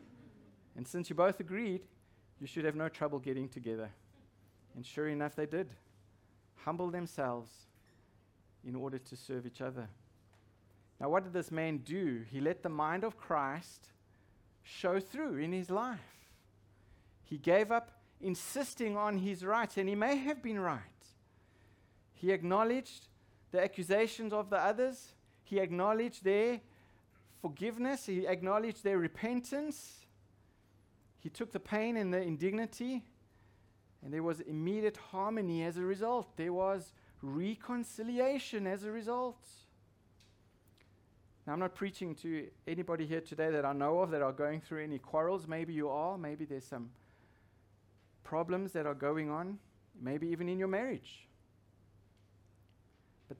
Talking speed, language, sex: 140 wpm, English, male